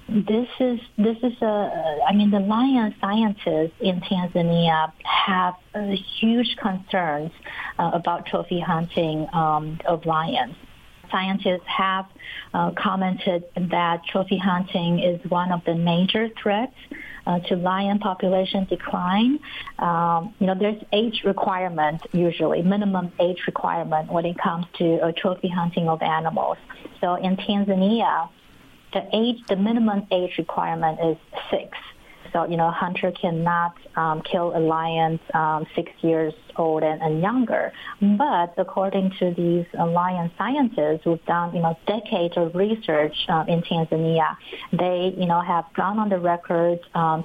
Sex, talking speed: female, 140 wpm